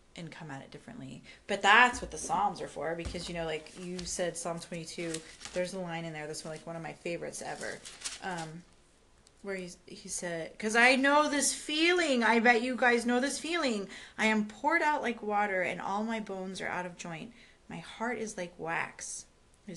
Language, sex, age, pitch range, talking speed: English, female, 30-49, 180-245 Hz, 210 wpm